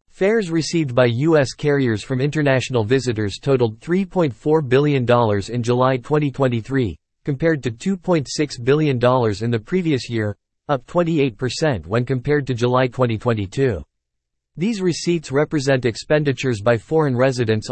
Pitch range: 115-150 Hz